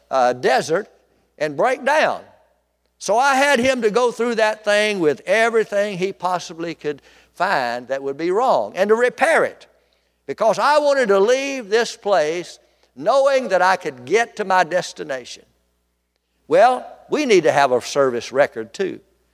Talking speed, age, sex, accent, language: 160 wpm, 60-79, male, American, English